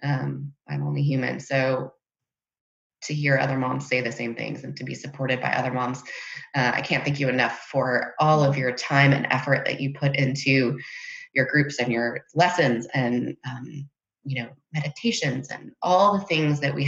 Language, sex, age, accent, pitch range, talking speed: English, female, 20-39, American, 130-150 Hz, 190 wpm